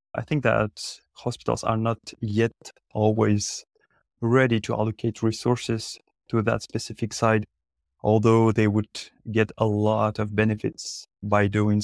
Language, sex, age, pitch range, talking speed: English, male, 20-39, 105-115 Hz, 130 wpm